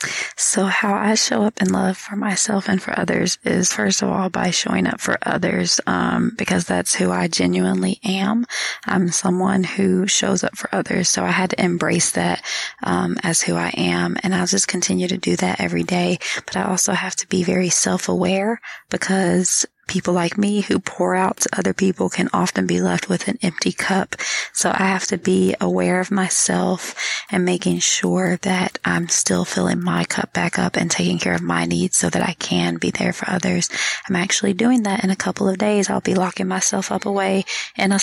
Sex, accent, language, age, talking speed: female, American, English, 20-39, 205 wpm